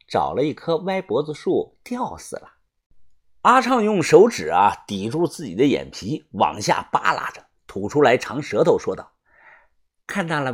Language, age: Chinese, 50-69